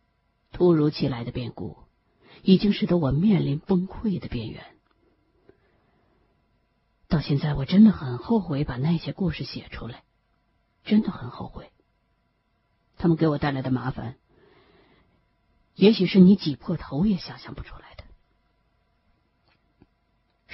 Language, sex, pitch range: Chinese, female, 135-200 Hz